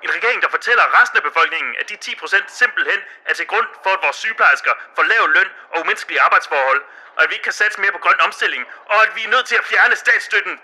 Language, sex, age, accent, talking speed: Danish, male, 30-49, native, 245 wpm